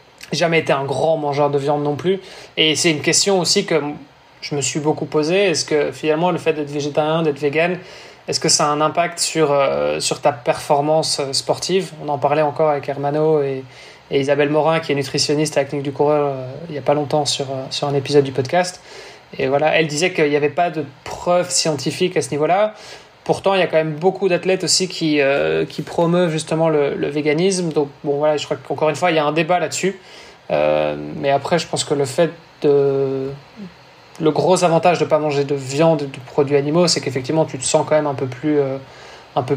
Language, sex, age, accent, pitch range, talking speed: French, male, 20-39, French, 145-165 Hz, 225 wpm